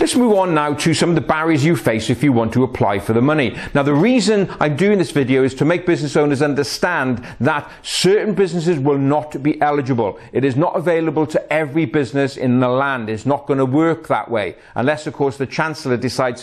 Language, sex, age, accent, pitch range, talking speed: English, male, 40-59, British, 125-165 Hz, 225 wpm